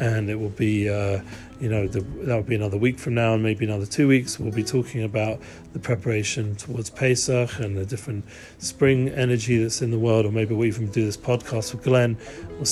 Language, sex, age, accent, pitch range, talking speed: English, male, 40-59, British, 110-120 Hz, 215 wpm